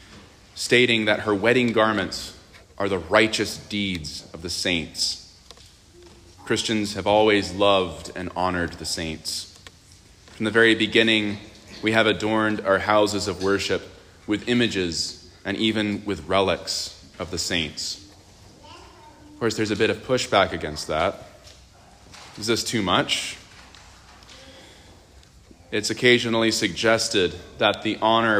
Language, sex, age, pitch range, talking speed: English, male, 30-49, 90-110 Hz, 125 wpm